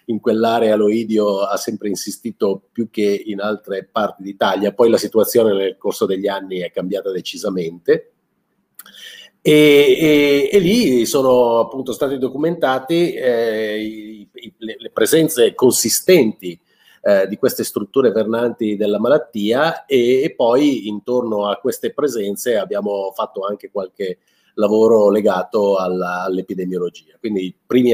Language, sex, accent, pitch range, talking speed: Italian, male, native, 100-145 Hz, 125 wpm